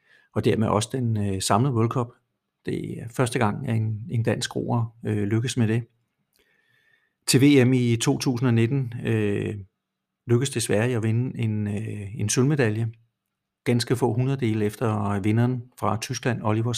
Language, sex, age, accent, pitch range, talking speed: Danish, male, 50-69, native, 105-125 Hz, 145 wpm